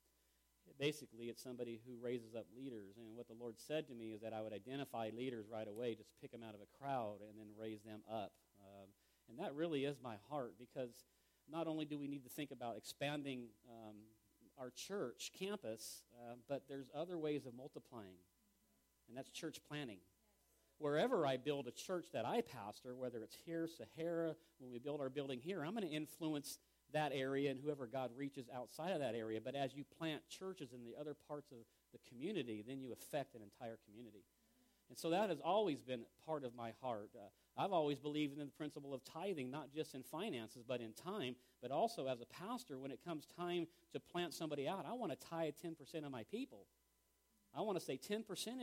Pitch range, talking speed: 115-155 Hz, 205 wpm